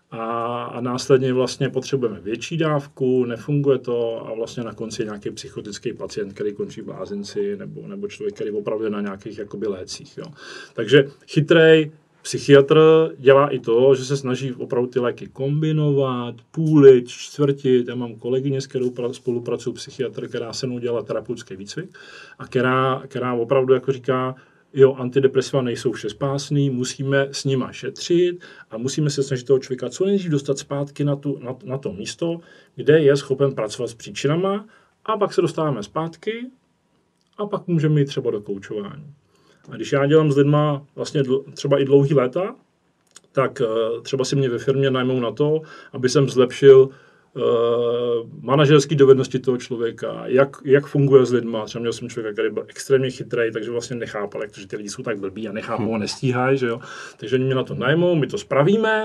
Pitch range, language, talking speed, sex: 125-160 Hz, Czech, 170 wpm, male